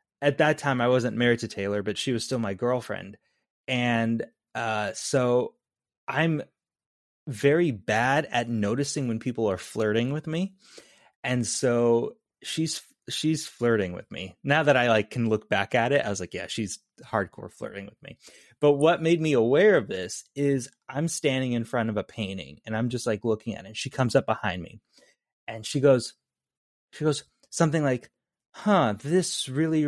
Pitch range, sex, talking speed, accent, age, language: 115-150 Hz, male, 185 wpm, American, 30-49, English